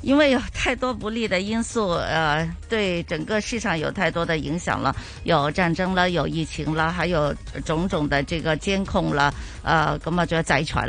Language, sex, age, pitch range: Chinese, female, 50-69, 150-200 Hz